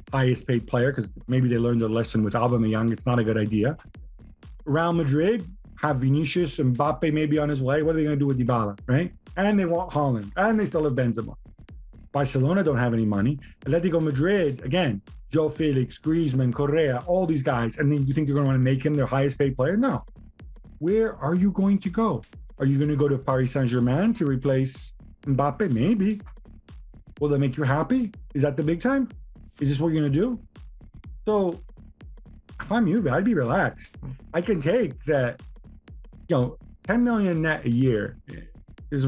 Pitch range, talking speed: 125-180 Hz, 200 wpm